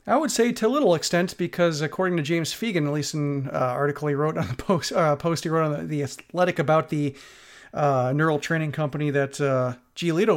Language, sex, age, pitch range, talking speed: English, male, 40-59, 145-175 Hz, 225 wpm